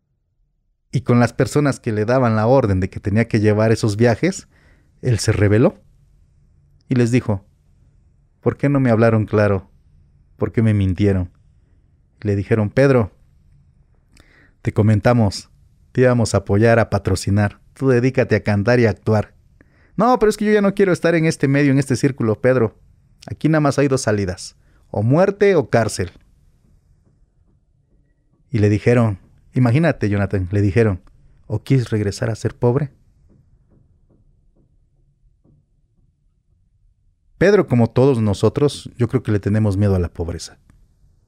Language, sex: Spanish, male